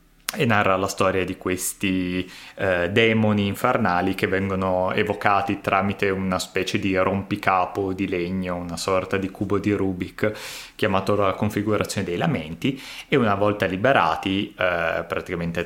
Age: 20-39